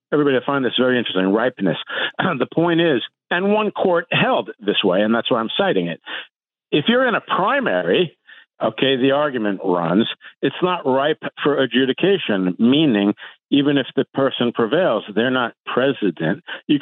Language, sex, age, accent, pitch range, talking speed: English, male, 60-79, American, 105-140 Hz, 165 wpm